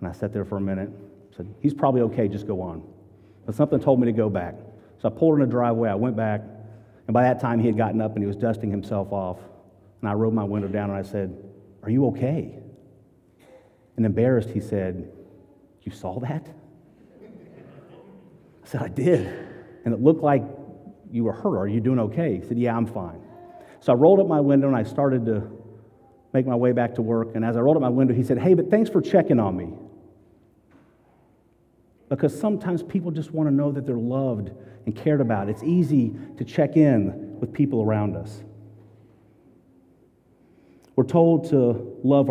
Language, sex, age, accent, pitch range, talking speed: English, male, 40-59, American, 110-140 Hz, 200 wpm